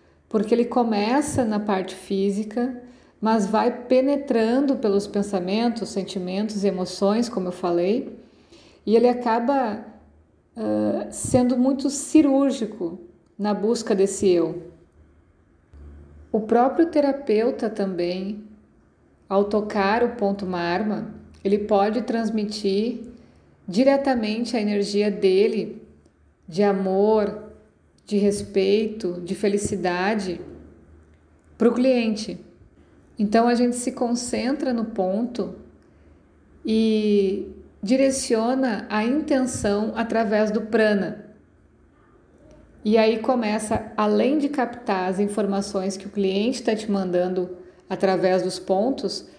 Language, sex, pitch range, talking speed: Portuguese, female, 195-235 Hz, 100 wpm